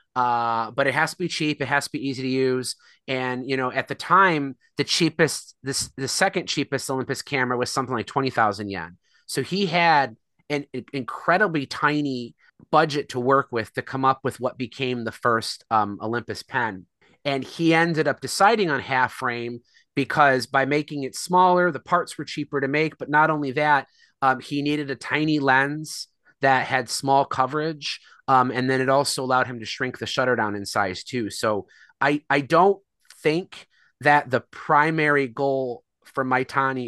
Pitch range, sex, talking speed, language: 115-145 Hz, male, 185 wpm, English